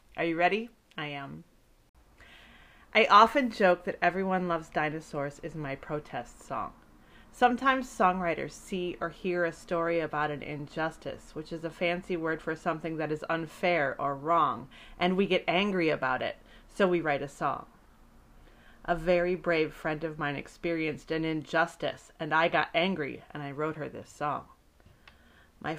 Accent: American